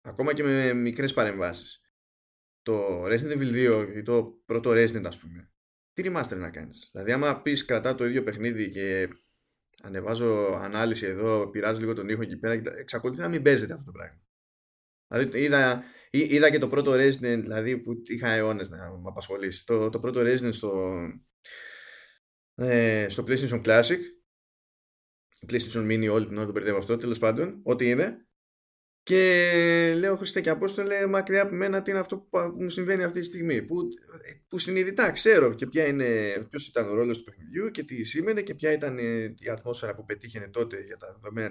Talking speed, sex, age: 170 wpm, male, 20-39